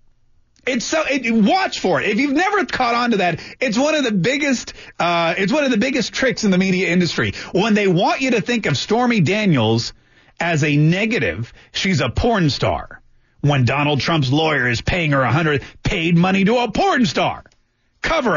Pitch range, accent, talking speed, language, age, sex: 145-220 Hz, American, 200 wpm, English, 40-59, male